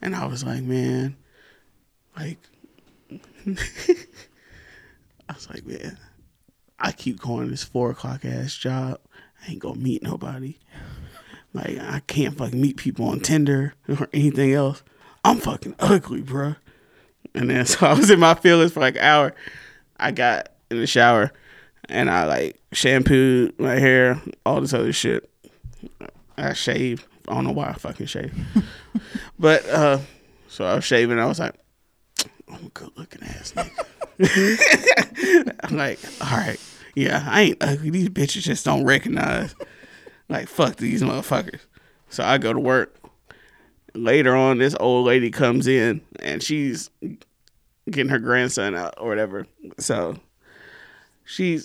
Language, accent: English, American